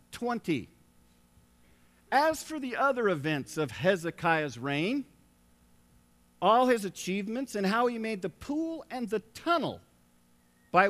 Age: 50-69